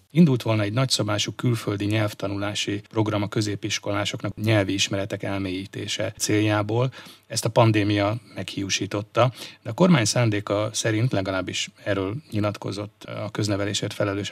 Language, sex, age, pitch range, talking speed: Hungarian, male, 30-49, 100-110 Hz, 115 wpm